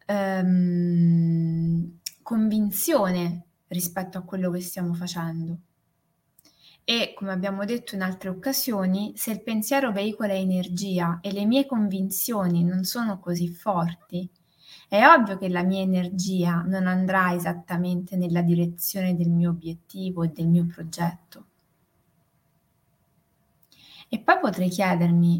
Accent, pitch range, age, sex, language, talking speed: native, 170-205 Hz, 20-39, female, Italian, 115 wpm